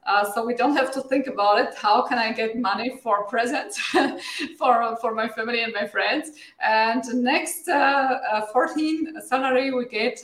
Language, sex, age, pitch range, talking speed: Romanian, female, 20-39, 195-240 Hz, 180 wpm